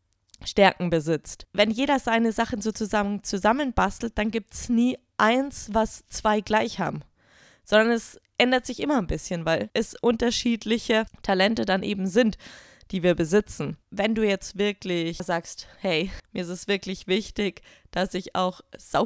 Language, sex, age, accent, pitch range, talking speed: German, female, 20-39, German, 180-225 Hz, 155 wpm